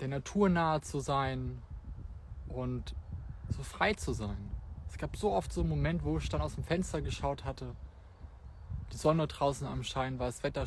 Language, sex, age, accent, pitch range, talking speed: German, male, 20-39, German, 90-140 Hz, 185 wpm